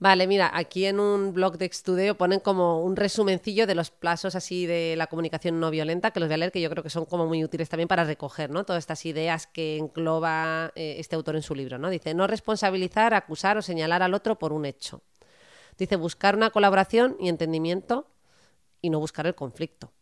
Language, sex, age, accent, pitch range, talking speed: Spanish, female, 30-49, Spanish, 155-190 Hz, 215 wpm